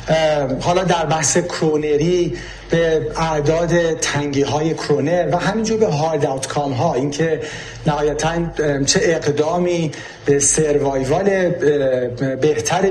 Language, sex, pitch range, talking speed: Persian, male, 140-170 Hz, 100 wpm